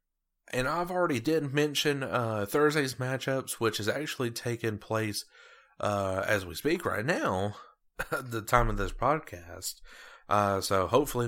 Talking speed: 150 wpm